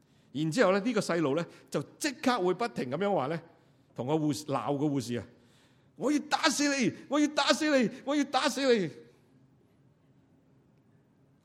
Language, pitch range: Chinese, 120-145 Hz